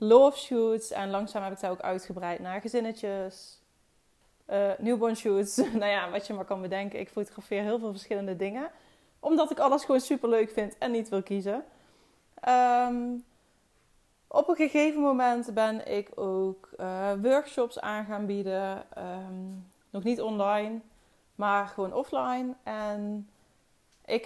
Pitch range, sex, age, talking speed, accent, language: 195-240 Hz, female, 20-39, 150 wpm, Dutch, Dutch